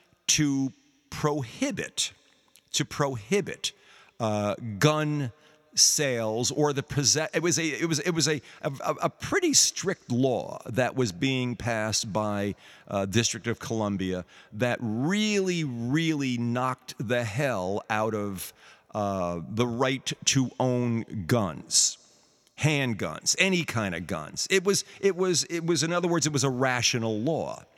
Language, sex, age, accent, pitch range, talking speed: English, male, 50-69, American, 120-155 Hz, 140 wpm